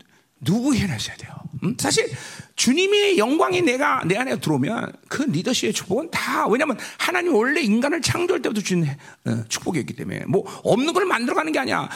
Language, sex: Korean, male